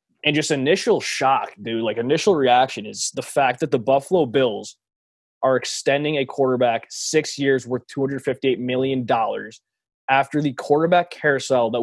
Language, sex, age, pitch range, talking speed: English, male, 20-39, 130-150 Hz, 145 wpm